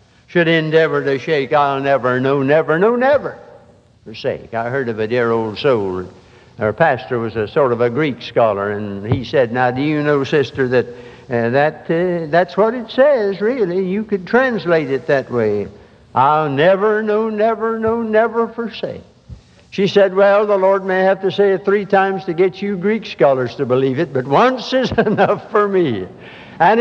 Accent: American